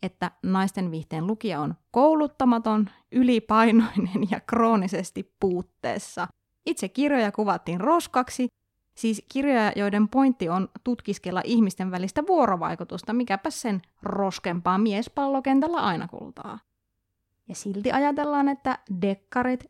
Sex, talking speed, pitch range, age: female, 100 wpm, 190-250 Hz, 20-39